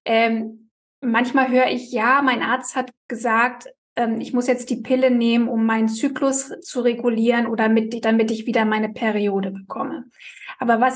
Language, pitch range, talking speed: German, 230-270 Hz, 170 wpm